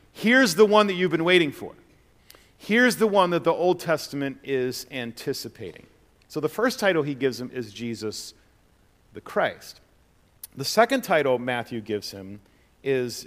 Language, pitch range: English, 105-150 Hz